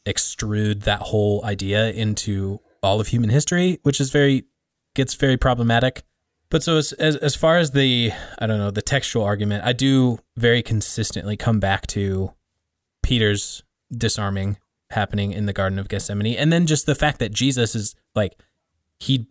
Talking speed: 170 wpm